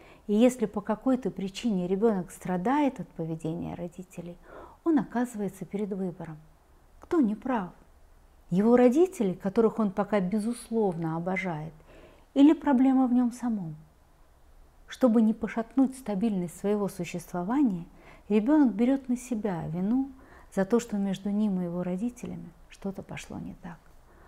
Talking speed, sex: 130 wpm, female